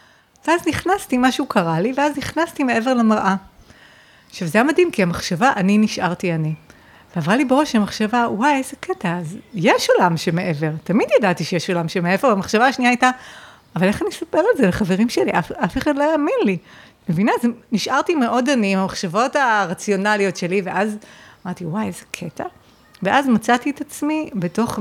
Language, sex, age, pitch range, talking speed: Hebrew, female, 30-49, 185-260 Hz, 165 wpm